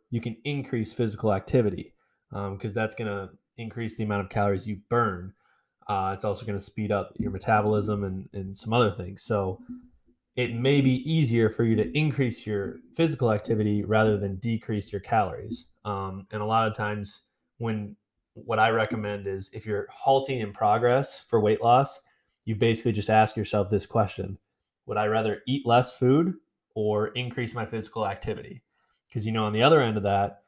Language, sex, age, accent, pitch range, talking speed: English, male, 20-39, American, 105-120 Hz, 185 wpm